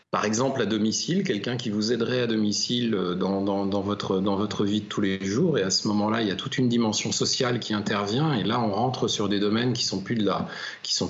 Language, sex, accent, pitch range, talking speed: French, male, French, 95-120 Hz, 245 wpm